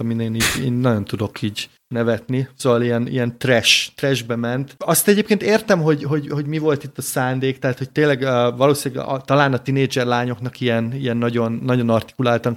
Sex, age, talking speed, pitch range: male, 30-49, 180 wpm, 115-130 Hz